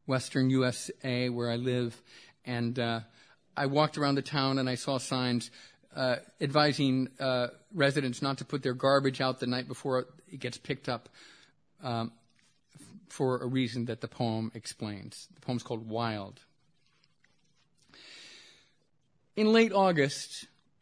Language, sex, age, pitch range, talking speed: English, male, 40-59, 125-150 Hz, 140 wpm